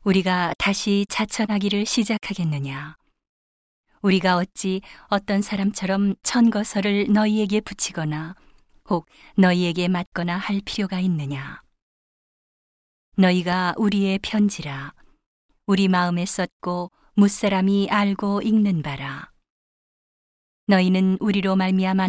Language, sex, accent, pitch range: Korean, female, native, 175-205 Hz